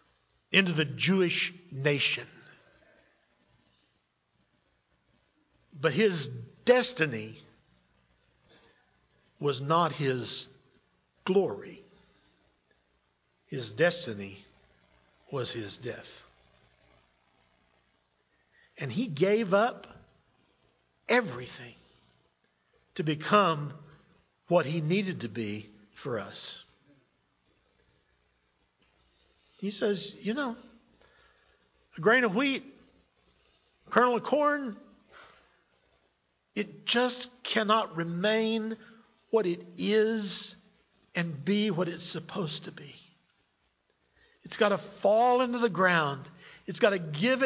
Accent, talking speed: American, 85 wpm